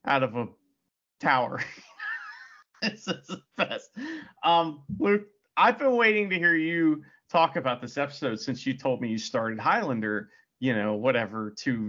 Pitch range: 135-200 Hz